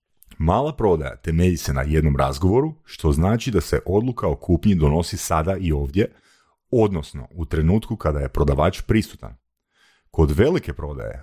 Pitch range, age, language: 80-105 Hz, 40-59, Croatian